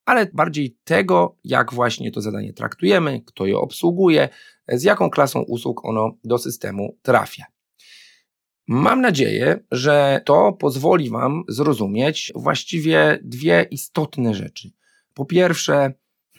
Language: Polish